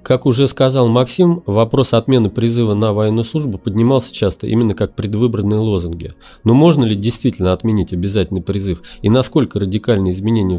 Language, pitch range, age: Russian, 95-120 Hz, 30-49